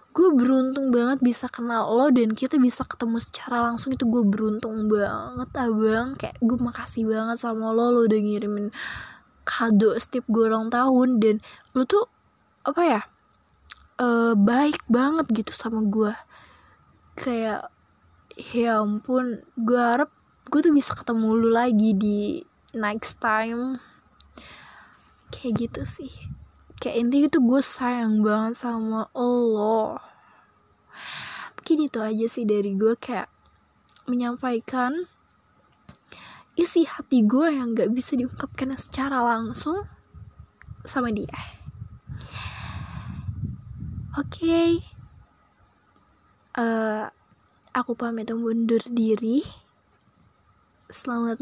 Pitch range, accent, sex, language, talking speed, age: 225-255 Hz, native, female, Indonesian, 110 wpm, 20-39